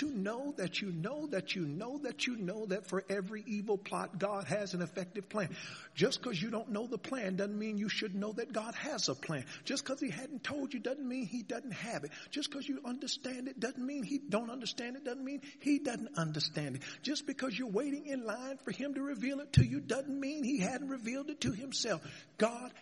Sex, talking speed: male, 235 wpm